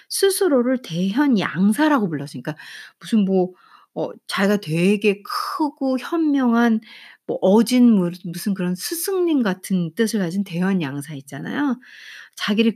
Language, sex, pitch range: Korean, female, 175-290 Hz